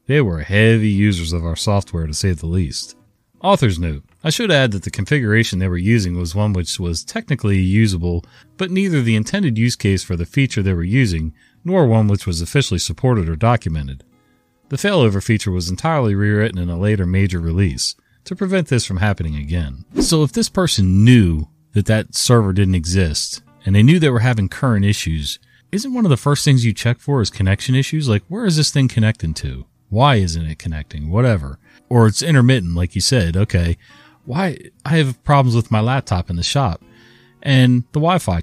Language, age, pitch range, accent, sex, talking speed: English, 40-59, 90-125 Hz, American, male, 200 wpm